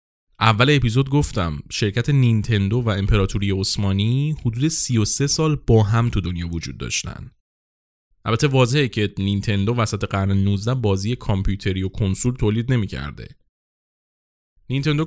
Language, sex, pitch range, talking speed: Persian, male, 100-135 Hz, 125 wpm